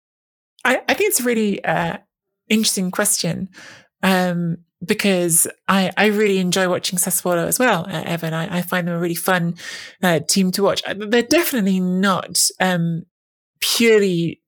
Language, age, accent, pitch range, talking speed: English, 20-39, British, 170-195 Hz, 145 wpm